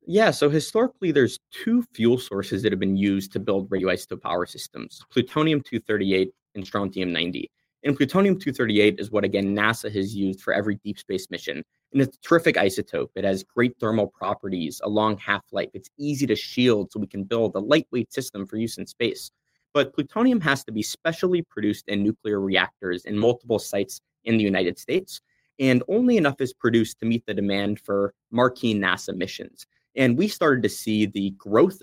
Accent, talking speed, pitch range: American, 190 wpm, 100-125 Hz